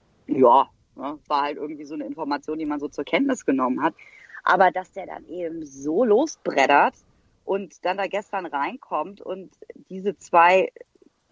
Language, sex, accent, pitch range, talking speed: German, female, German, 180-255 Hz, 155 wpm